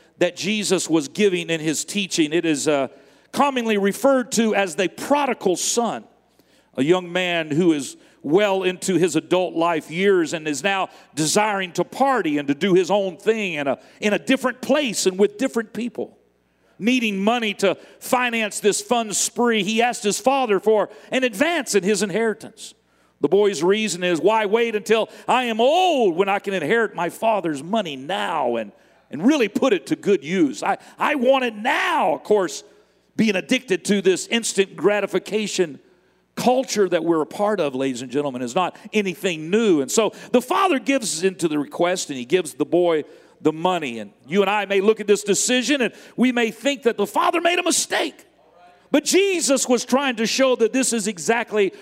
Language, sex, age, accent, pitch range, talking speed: English, male, 50-69, American, 180-235 Hz, 190 wpm